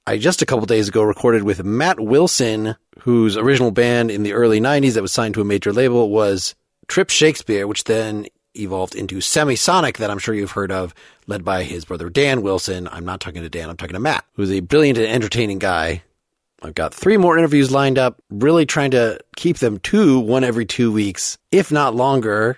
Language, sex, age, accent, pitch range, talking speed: English, male, 30-49, American, 100-140 Hz, 210 wpm